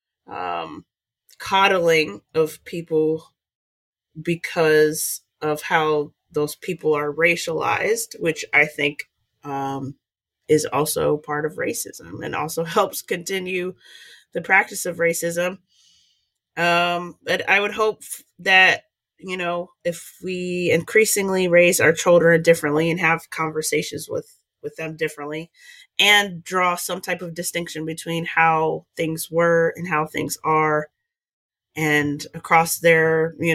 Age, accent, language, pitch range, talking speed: 30-49, American, English, 155-180 Hz, 120 wpm